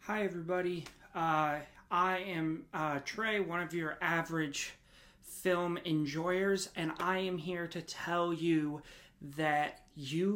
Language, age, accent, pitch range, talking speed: English, 30-49, American, 150-180 Hz, 125 wpm